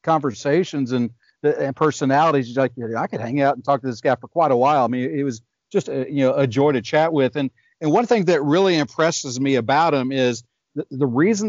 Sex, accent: male, American